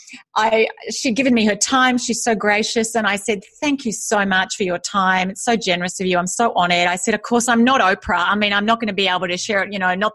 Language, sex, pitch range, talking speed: English, female, 190-265 Hz, 285 wpm